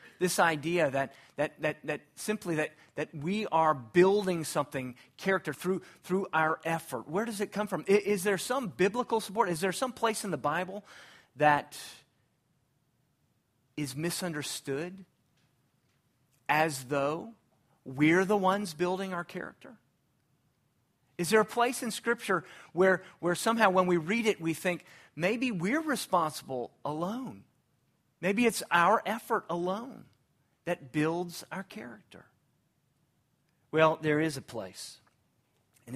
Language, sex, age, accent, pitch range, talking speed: English, male, 40-59, American, 130-185 Hz, 135 wpm